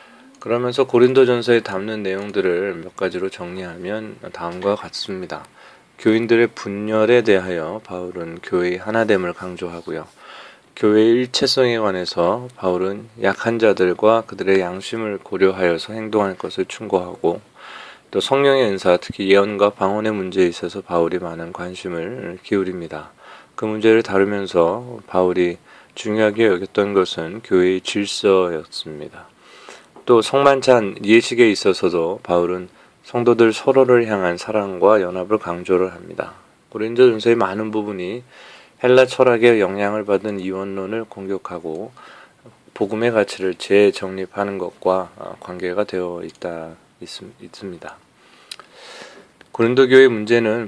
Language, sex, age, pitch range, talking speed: English, male, 20-39, 90-115 Hz, 95 wpm